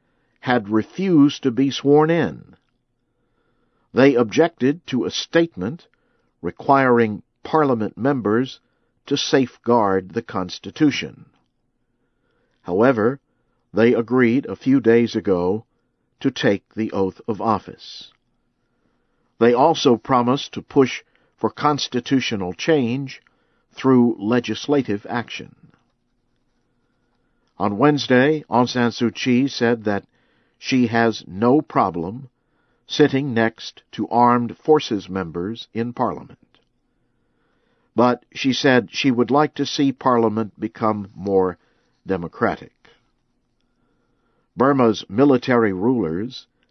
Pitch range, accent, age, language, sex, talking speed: 110-135 Hz, American, 50-69, English, male, 100 wpm